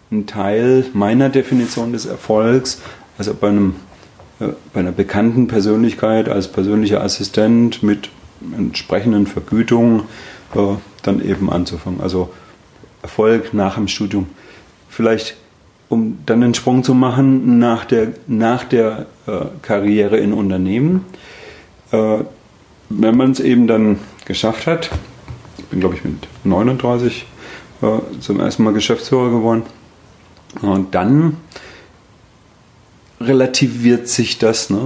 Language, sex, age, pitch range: German, male, 30-49, 100-120 Hz